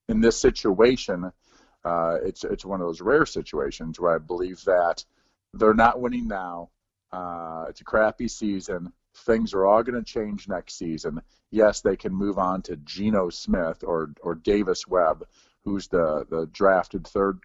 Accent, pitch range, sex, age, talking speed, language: American, 85-105 Hz, male, 40-59, 170 wpm, English